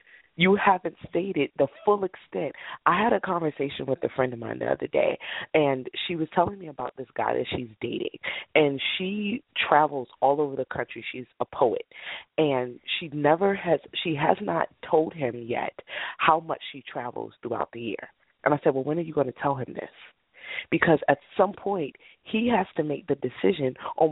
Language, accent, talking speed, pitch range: English, American, 195 wpm, 130-165 Hz